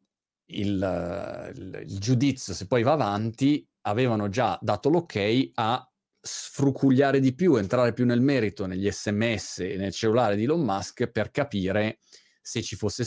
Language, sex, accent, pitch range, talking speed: Italian, male, native, 100-125 Hz, 150 wpm